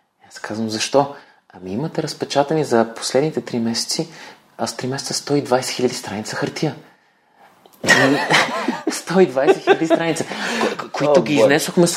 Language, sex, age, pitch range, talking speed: Bulgarian, male, 30-49, 120-155 Hz, 115 wpm